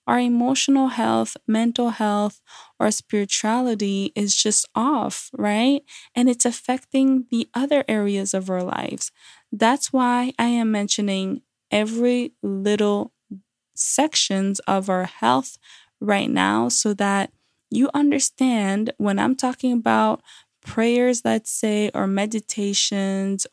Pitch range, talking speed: 200-250 Hz, 115 wpm